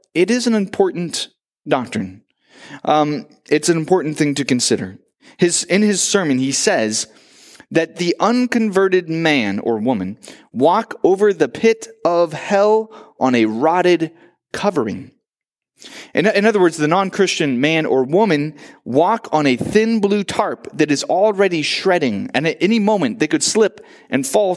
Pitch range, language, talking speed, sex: 145-205 Hz, English, 150 wpm, male